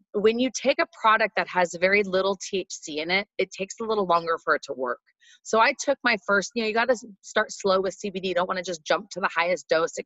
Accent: American